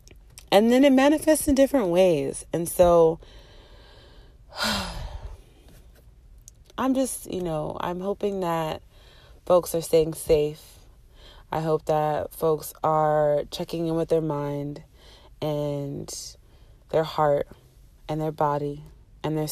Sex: female